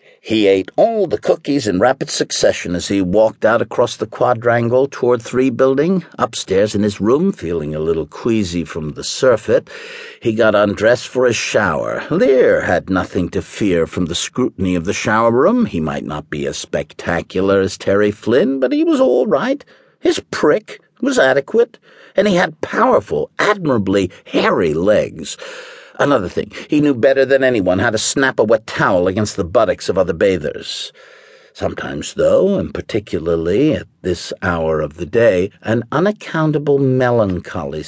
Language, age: English, 50-69